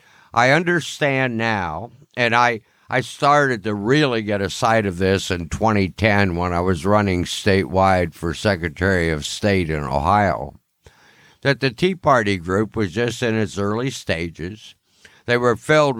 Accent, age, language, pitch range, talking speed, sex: American, 60-79, English, 100-130 Hz, 155 wpm, male